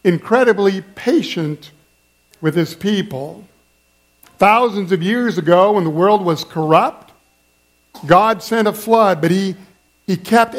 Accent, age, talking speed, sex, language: American, 50-69, 125 wpm, male, English